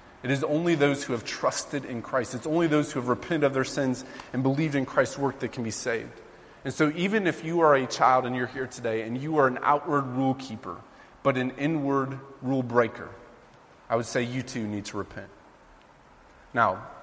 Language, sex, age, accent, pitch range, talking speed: English, male, 30-49, American, 120-135 Hz, 210 wpm